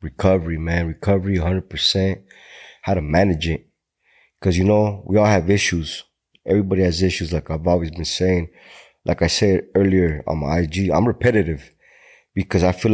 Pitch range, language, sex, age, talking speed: 90-120 Hz, English, male, 30-49, 160 wpm